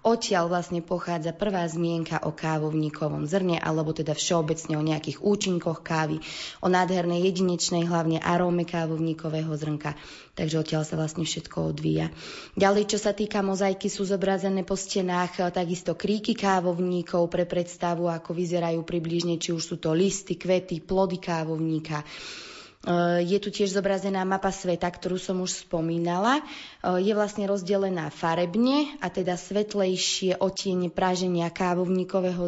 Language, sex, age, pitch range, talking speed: Slovak, female, 20-39, 165-195 Hz, 135 wpm